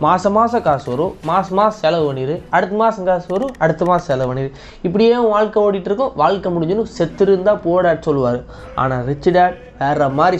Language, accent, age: Tamil, native, 20-39